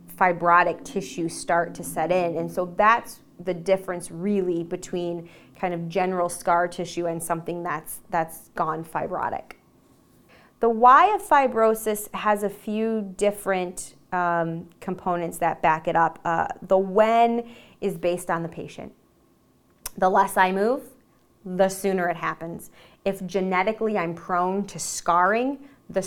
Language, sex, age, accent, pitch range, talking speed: English, female, 20-39, American, 175-210 Hz, 140 wpm